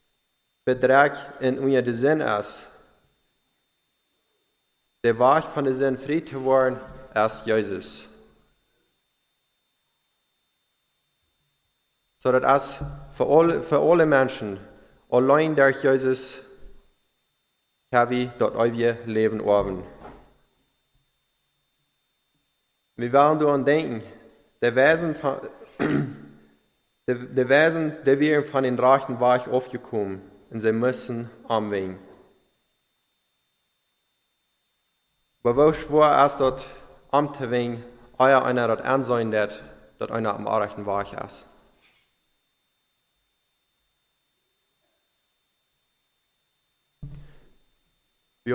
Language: English